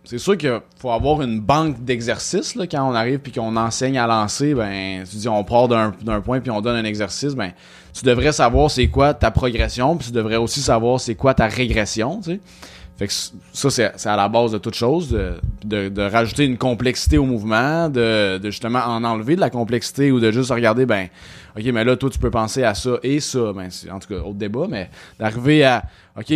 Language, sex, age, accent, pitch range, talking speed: French, male, 20-39, Canadian, 105-135 Hz, 235 wpm